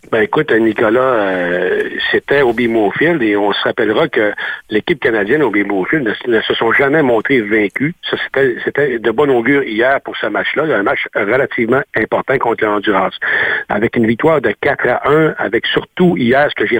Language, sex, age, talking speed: French, male, 60-79, 180 wpm